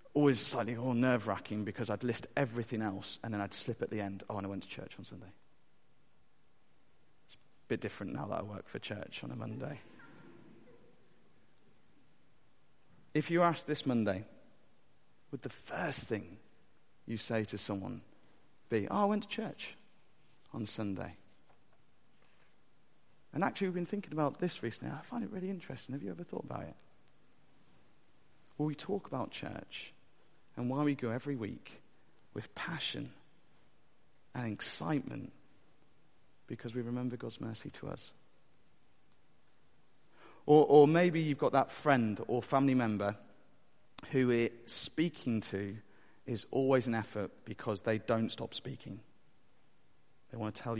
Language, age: English, 40-59